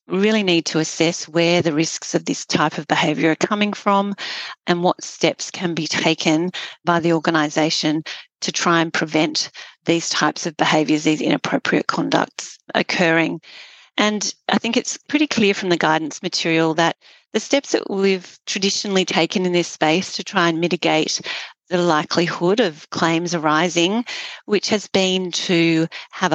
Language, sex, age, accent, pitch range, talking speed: English, female, 40-59, Australian, 160-195 Hz, 160 wpm